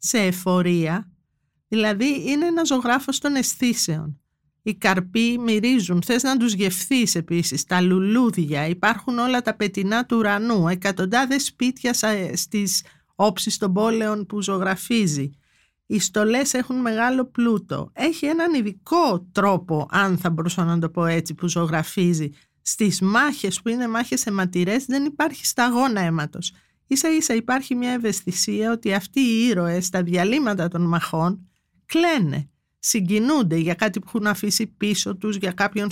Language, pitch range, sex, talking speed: Greek, 175-230 Hz, female, 140 wpm